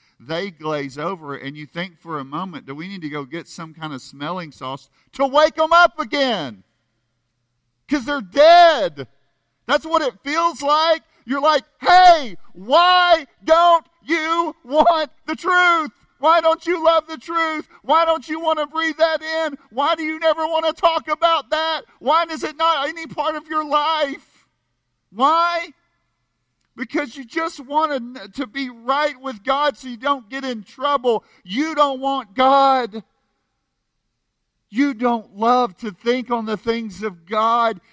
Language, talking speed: English, 165 wpm